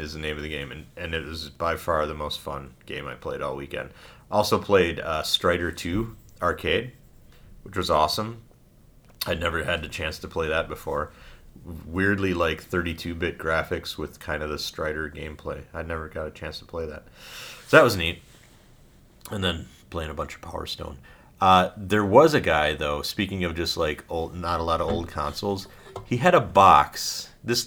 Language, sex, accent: English, male, American